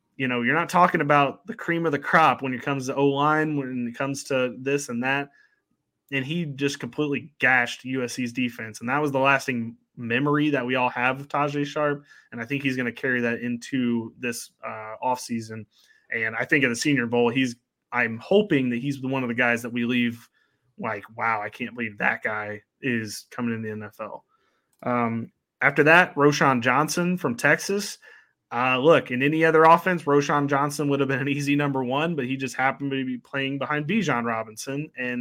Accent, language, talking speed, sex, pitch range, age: American, English, 205 wpm, male, 120-145 Hz, 20-39